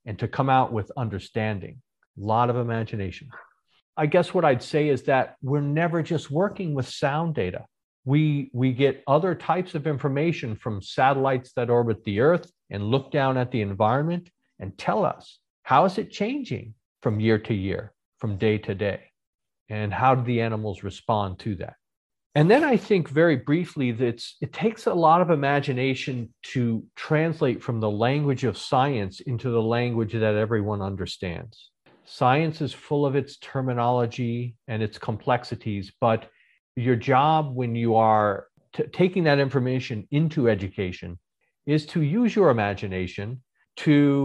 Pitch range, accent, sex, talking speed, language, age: 110-150 Hz, American, male, 160 wpm, English, 50-69